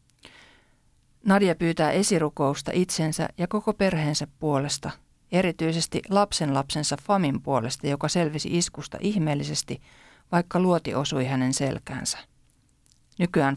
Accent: native